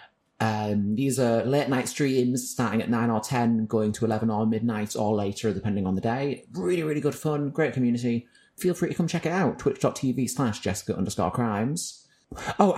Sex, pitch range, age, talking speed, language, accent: male, 105-130 Hz, 30-49, 195 wpm, English, British